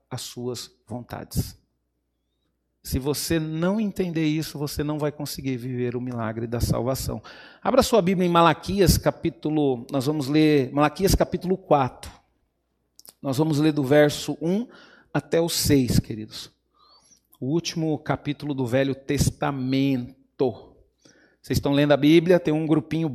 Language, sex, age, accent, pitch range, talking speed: Portuguese, male, 40-59, Brazilian, 130-170 Hz, 135 wpm